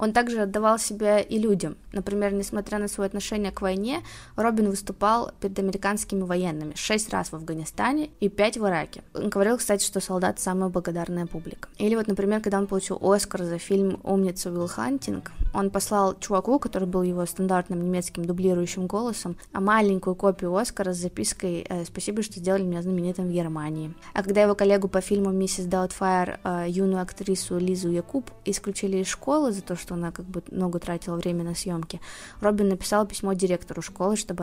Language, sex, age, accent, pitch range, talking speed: Russian, female, 20-39, native, 180-205 Hz, 175 wpm